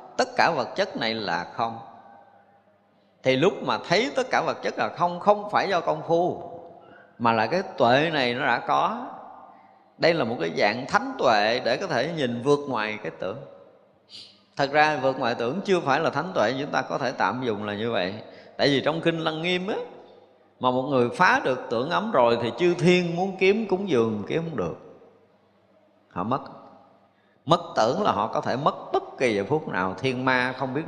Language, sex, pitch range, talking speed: Vietnamese, male, 110-160 Hz, 205 wpm